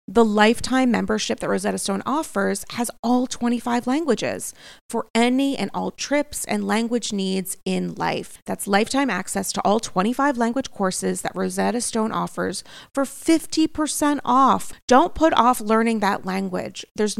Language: English